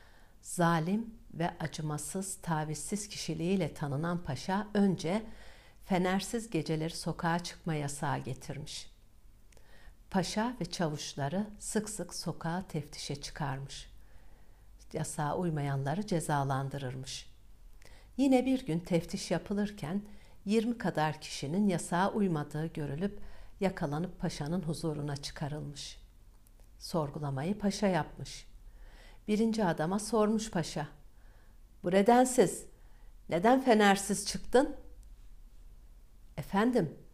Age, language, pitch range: 60-79, Turkish, 135-200 Hz